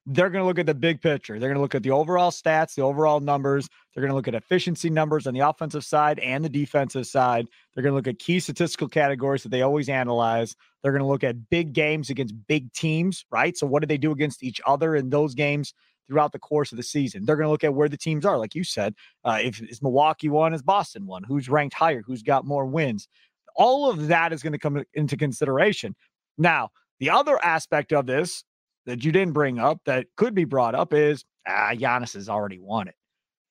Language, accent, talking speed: English, American, 240 wpm